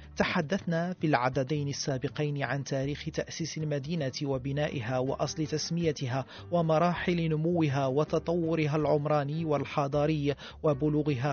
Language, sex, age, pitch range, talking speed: Arabic, male, 40-59, 140-155 Hz, 90 wpm